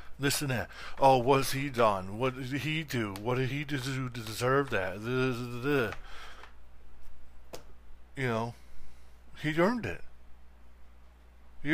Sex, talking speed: male, 125 wpm